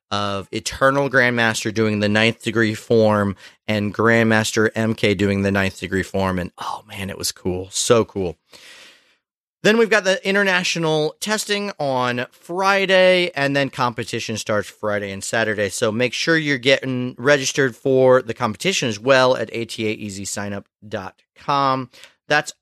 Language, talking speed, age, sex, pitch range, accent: English, 135 wpm, 30-49, male, 110-150 Hz, American